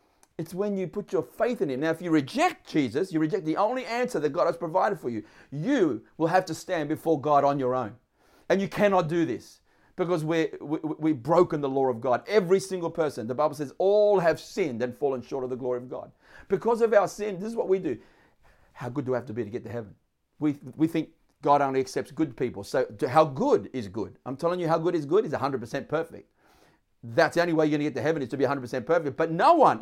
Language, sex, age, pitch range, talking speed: English, male, 40-59, 135-190 Hz, 250 wpm